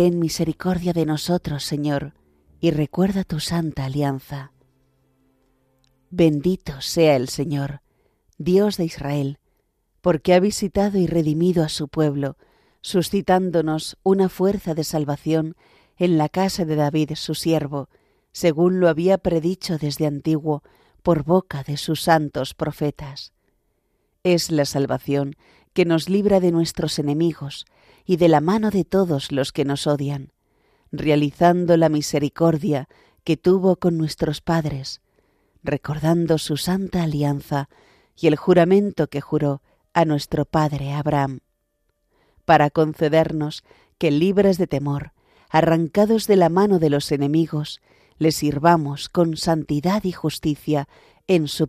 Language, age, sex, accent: Spanish, 40-59, female, Spanish